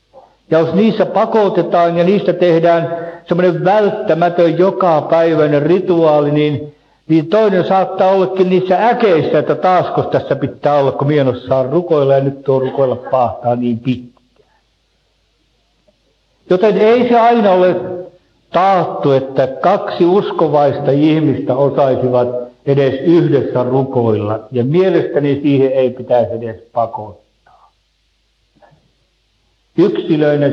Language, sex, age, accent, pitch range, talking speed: Finnish, male, 60-79, native, 130-175 Hz, 110 wpm